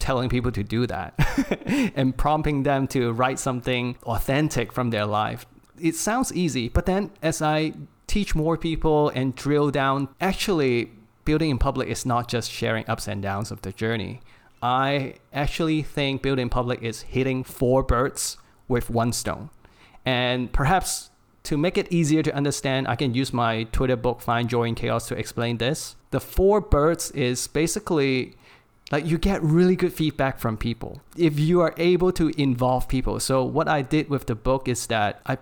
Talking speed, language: 180 wpm, English